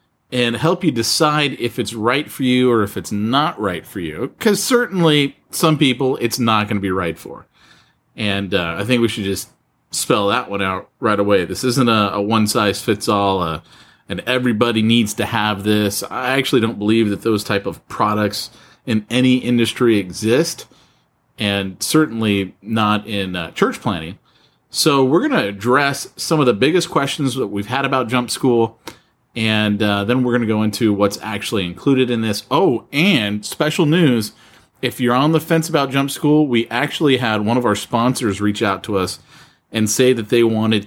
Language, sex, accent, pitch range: English, male, American, 105-130 Hz